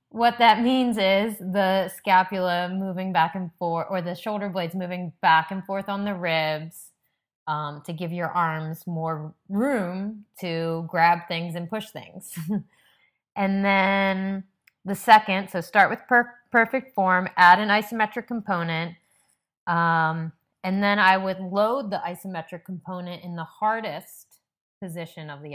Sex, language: female, English